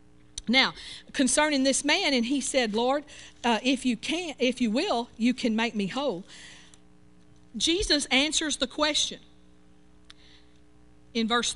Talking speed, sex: 135 wpm, female